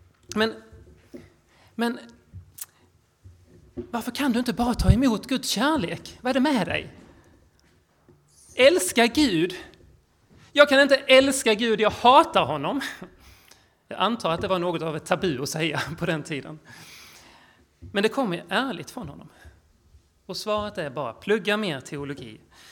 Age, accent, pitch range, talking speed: 30-49, native, 150-205 Hz, 140 wpm